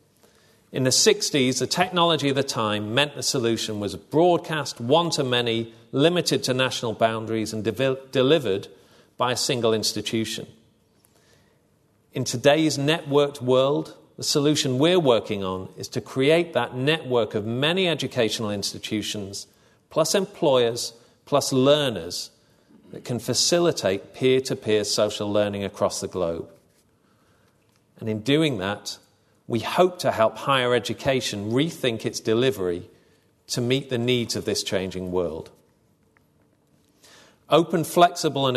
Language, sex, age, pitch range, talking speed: English, male, 40-59, 110-145 Hz, 125 wpm